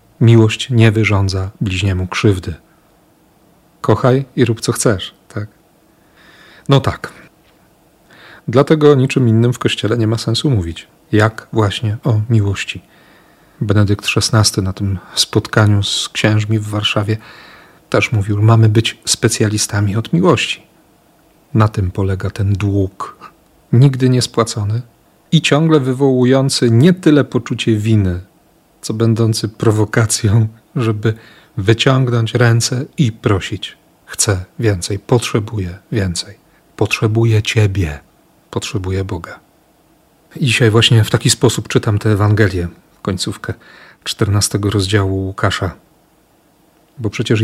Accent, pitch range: native, 105-130 Hz